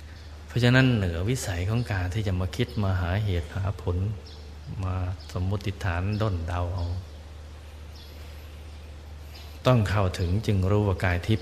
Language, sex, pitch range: Thai, male, 75-100 Hz